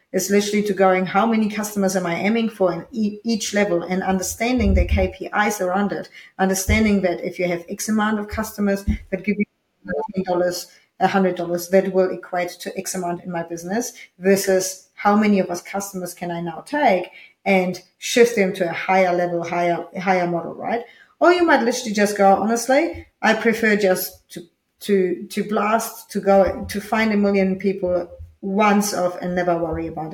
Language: English